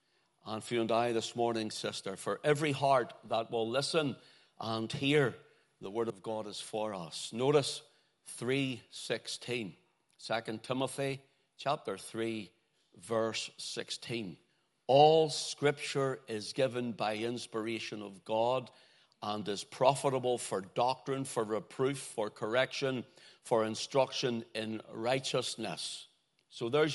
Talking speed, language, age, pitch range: 120 wpm, English, 60-79, 115-140 Hz